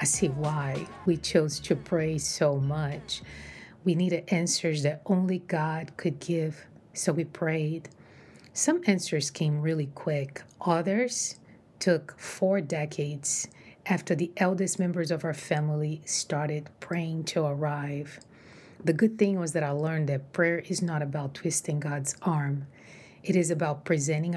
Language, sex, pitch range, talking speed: English, female, 150-180 Hz, 145 wpm